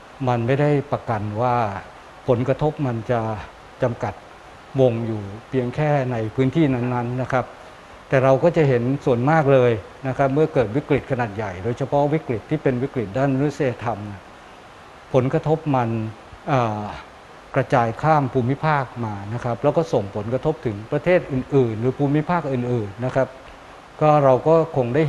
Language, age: Thai, 60-79